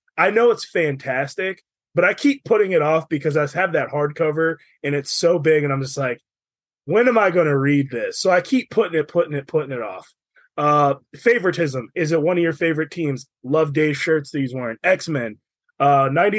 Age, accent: 20-39, American